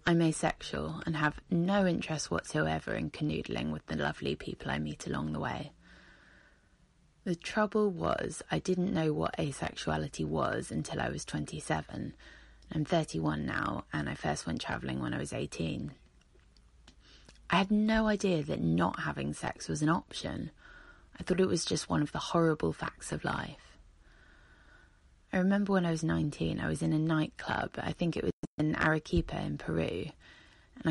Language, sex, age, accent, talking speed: English, female, 20-39, British, 165 wpm